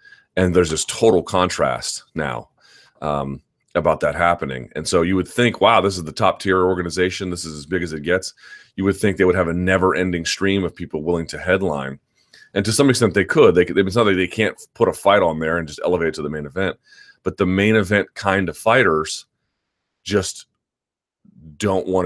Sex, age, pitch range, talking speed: male, 30-49, 85-105 Hz, 215 wpm